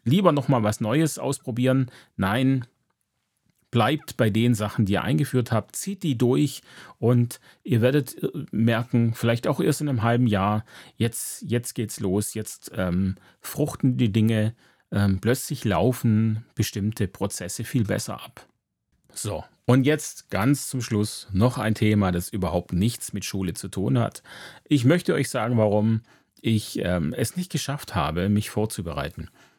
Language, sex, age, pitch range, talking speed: German, male, 30-49, 105-135 Hz, 150 wpm